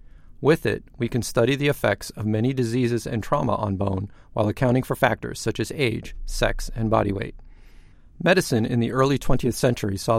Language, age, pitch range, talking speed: English, 40-59, 105-130 Hz, 190 wpm